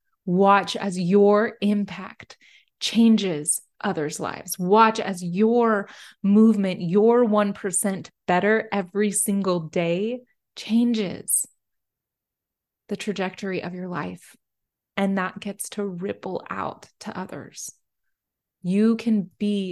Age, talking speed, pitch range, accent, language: 20-39, 105 wpm, 185-215 Hz, American, English